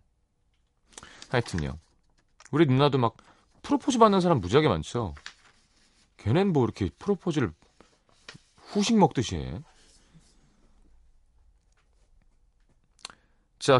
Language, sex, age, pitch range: Korean, male, 30-49, 90-135 Hz